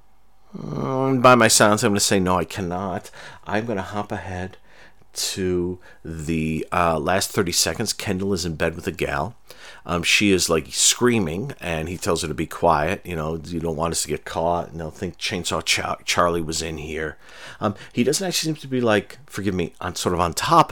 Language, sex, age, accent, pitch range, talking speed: English, male, 40-59, American, 85-105 Hz, 210 wpm